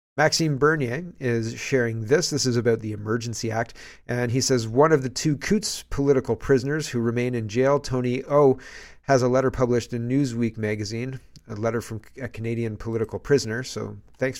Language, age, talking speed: English, 40-59, 180 wpm